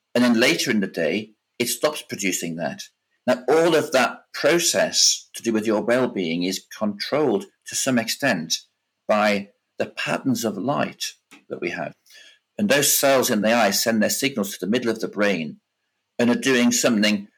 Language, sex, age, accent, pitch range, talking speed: English, male, 50-69, British, 95-125 Hz, 180 wpm